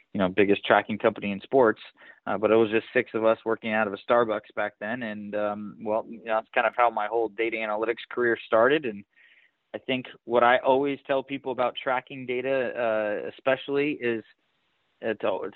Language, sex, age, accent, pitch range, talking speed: English, male, 20-39, American, 105-125 Hz, 205 wpm